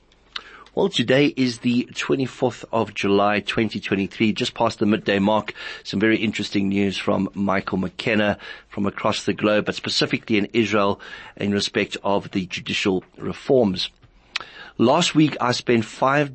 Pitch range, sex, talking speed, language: 100-125 Hz, male, 145 wpm, English